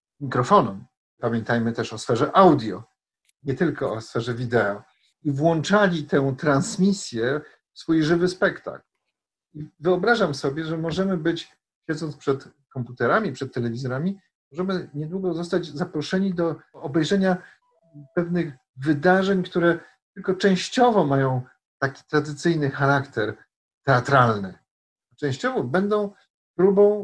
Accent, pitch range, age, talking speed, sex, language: native, 135-180 Hz, 50-69, 110 wpm, male, Polish